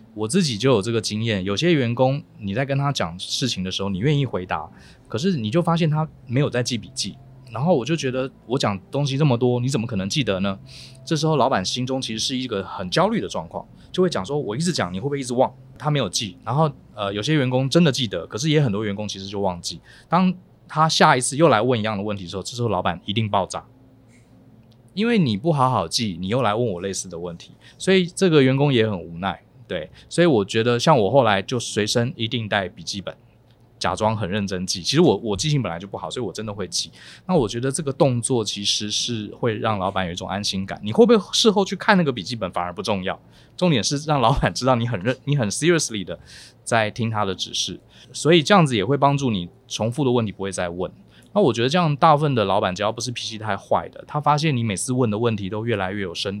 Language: Chinese